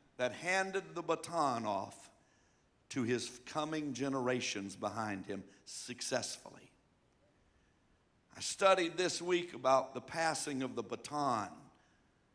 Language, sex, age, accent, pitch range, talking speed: English, male, 60-79, American, 135-195 Hz, 105 wpm